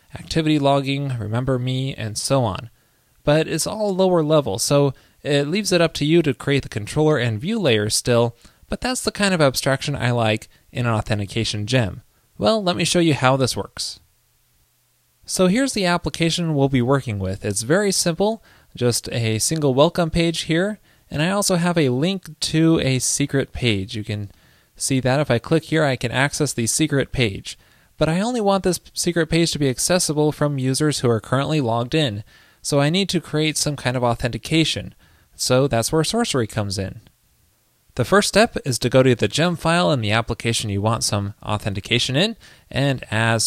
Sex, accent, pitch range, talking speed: male, American, 115-160 Hz, 195 wpm